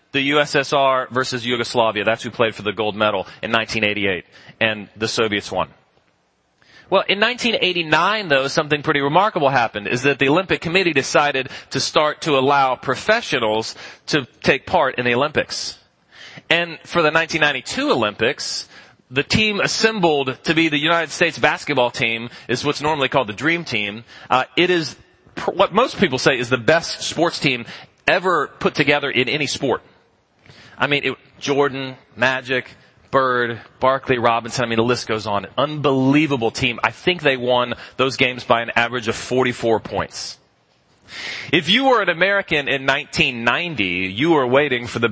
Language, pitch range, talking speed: English, 120-165 Hz, 160 wpm